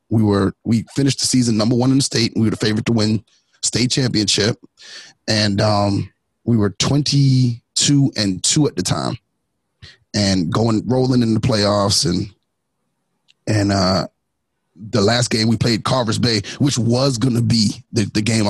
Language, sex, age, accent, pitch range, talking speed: English, male, 30-49, American, 100-125 Hz, 170 wpm